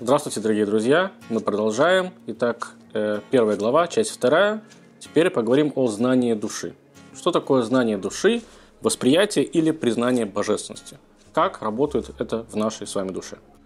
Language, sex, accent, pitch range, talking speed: Russian, male, native, 115-155 Hz, 135 wpm